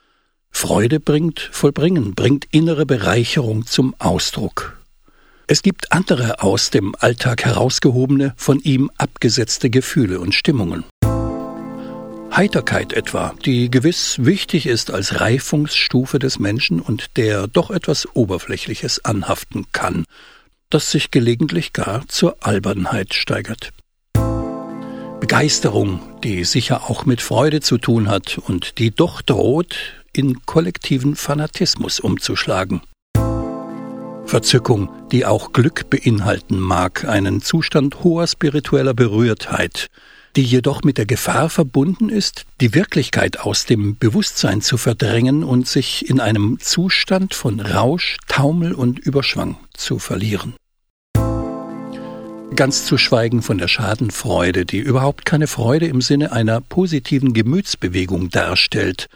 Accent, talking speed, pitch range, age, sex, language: German, 115 wpm, 110-150 Hz, 60-79, male, German